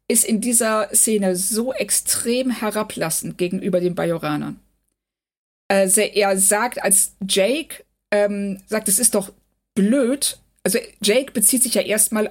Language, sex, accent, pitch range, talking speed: German, female, German, 180-225 Hz, 130 wpm